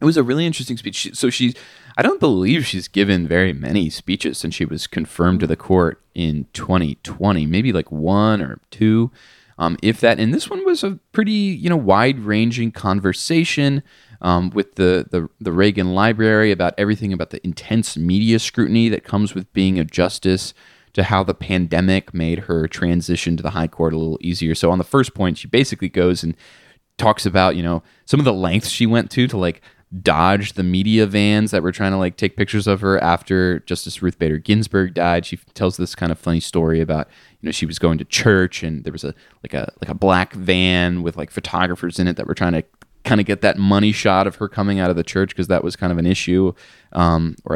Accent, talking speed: American, 220 wpm